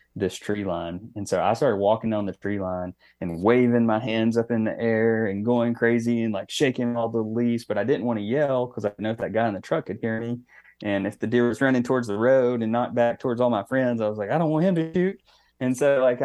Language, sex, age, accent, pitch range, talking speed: English, male, 20-39, American, 100-120 Hz, 275 wpm